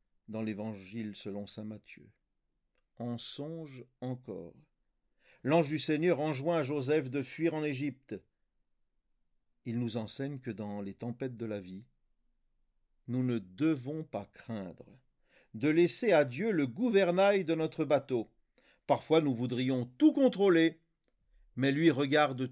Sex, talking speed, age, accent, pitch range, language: male, 135 wpm, 50-69, French, 120-165 Hz, French